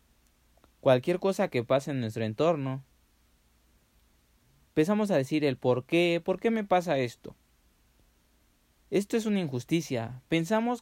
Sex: male